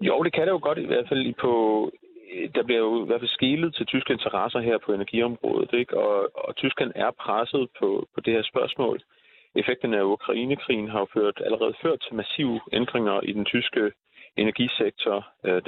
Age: 30-49